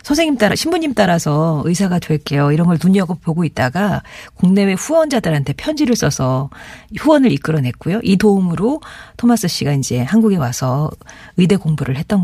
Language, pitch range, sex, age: Korean, 145-210 Hz, female, 40-59